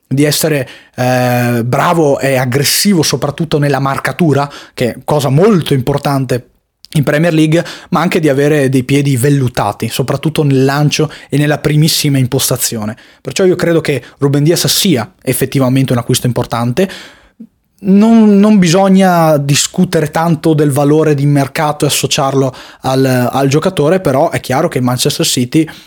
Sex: male